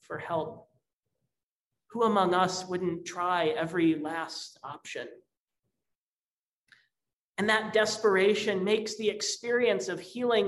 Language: English